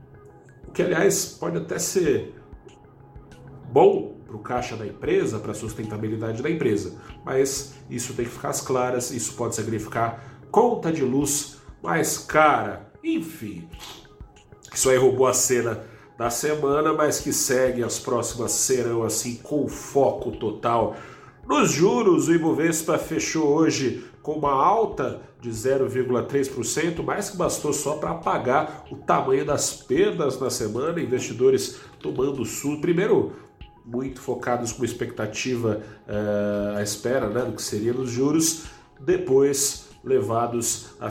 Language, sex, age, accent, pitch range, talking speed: Portuguese, male, 40-59, Brazilian, 110-140 Hz, 135 wpm